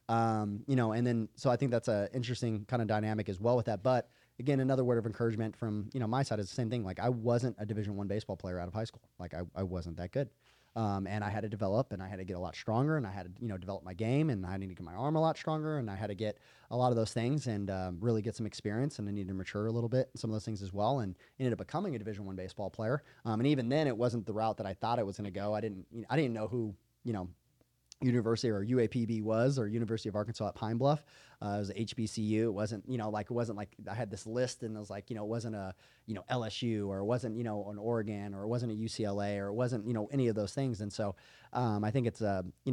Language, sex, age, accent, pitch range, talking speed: English, male, 20-39, American, 100-120 Hz, 310 wpm